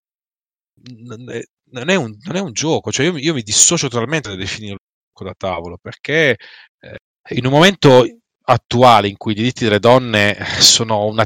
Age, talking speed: 30-49, 180 wpm